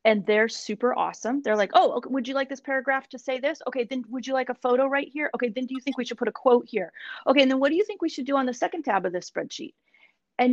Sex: female